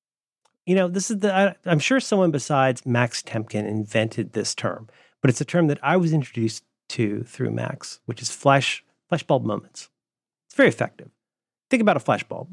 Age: 40-59